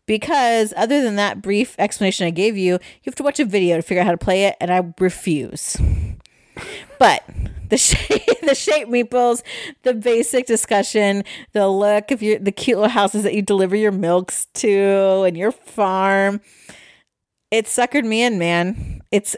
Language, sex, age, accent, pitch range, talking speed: English, female, 30-49, American, 170-235 Hz, 175 wpm